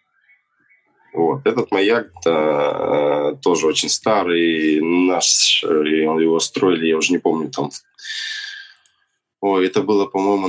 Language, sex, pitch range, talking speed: Russian, male, 80-100 Hz, 110 wpm